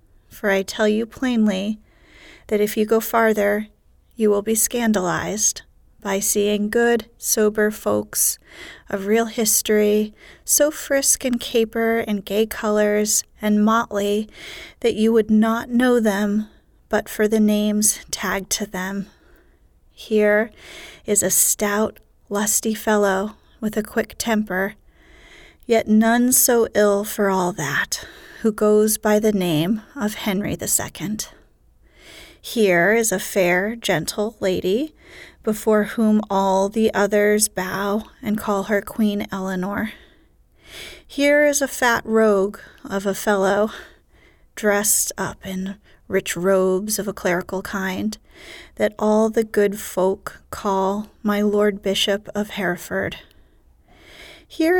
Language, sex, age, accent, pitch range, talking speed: English, female, 30-49, American, 200-225 Hz, 125 wpm